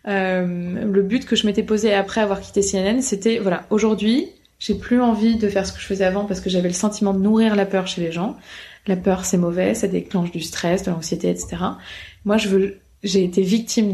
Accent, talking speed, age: French, 230 wpm, 20-39